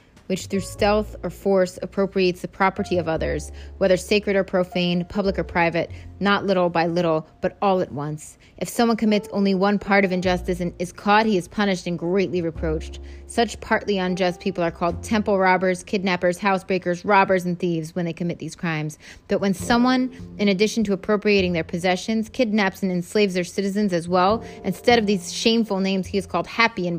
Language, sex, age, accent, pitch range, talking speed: English, female, 20-39, American, 165-200 Hz, 190 wpm